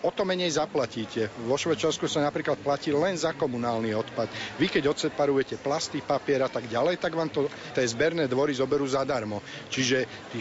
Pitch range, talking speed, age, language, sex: 130-160 Hz, 180 wpm, 50-69, Slovak, male